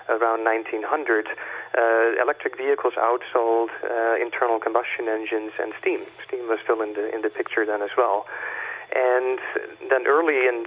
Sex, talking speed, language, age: male, 150 wpm, English, 40-59